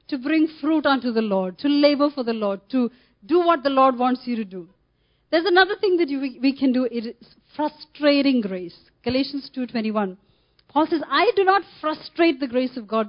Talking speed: 200 wpm